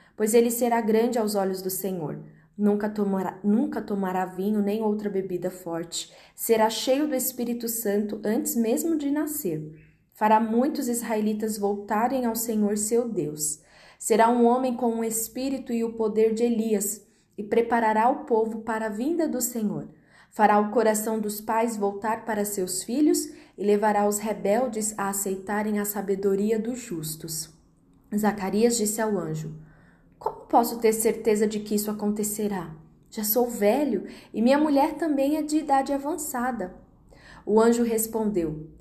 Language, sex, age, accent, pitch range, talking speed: Portuguese, female, 20-39, Brazilian, 200-235 Hz, 155 wpm